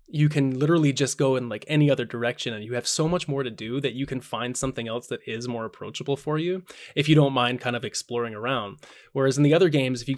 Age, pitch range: 20-39, 115-145 Hz